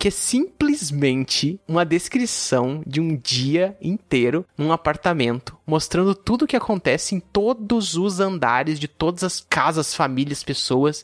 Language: Portuguese